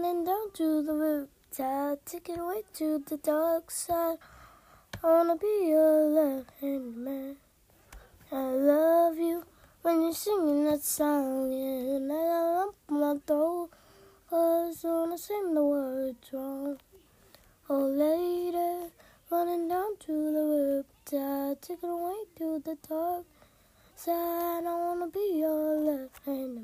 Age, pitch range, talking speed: 20-39, 270-340 Hz, 135 wpm